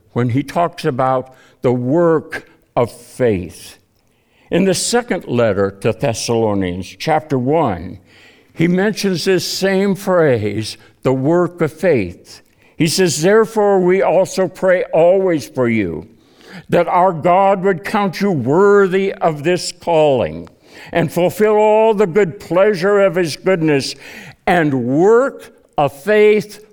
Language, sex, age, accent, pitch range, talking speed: English, male, 60-79, American, 125-195 Hz, 130 wpm